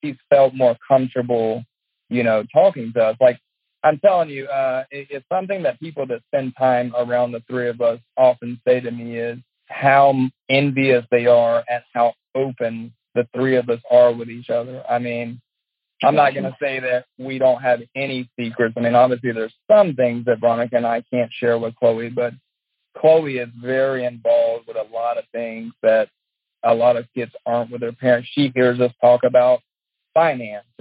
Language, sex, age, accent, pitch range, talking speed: English, male, 40-59, American, 115-130 Hz, 195 wpm